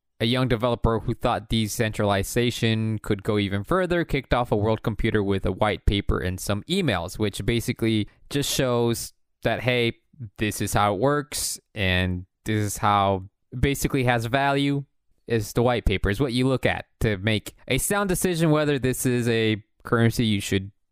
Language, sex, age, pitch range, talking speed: English, male, 20-39, 105-140 Hz, 180 wpm